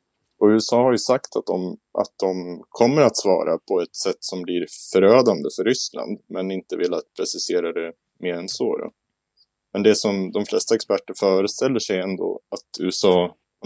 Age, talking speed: 20-39, 185 wpm